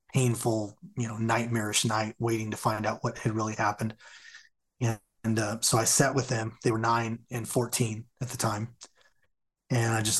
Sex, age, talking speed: male, 30-49, 190 wpm